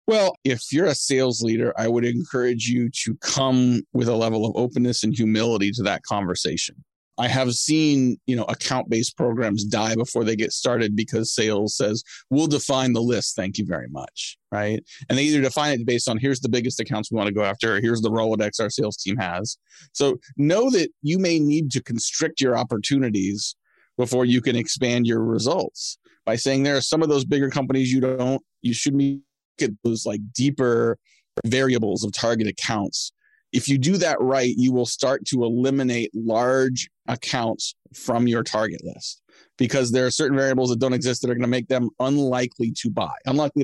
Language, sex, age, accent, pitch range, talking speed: English, male, 30-49, American, 115-140 Hz, 195 wpm